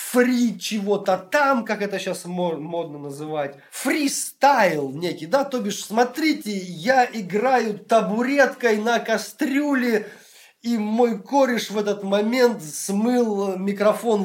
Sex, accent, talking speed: male, native, 115 wpm